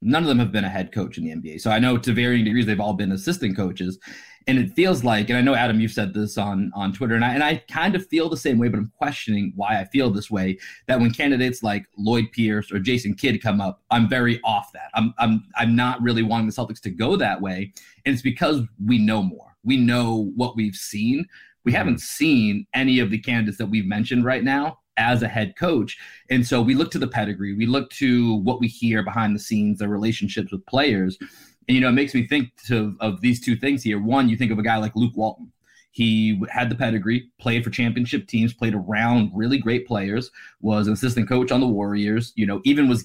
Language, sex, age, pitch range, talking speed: English, male, 30-49, 105-125 Hz, 240 wpm